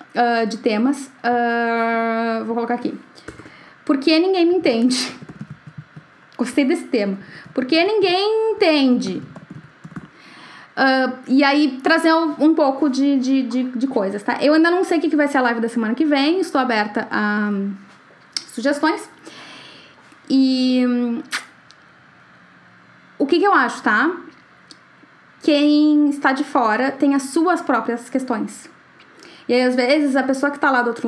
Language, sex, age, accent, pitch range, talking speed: Portuguese, female, 10-29, Brazilian, 240-295 Hz, 145 wpm